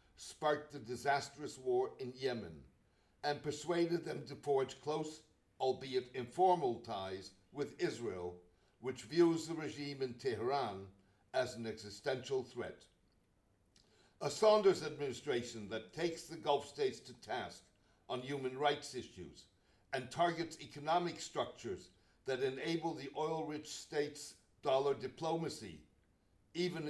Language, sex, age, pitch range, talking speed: English, male, 60-79, 120-165 Hz, 120 wpm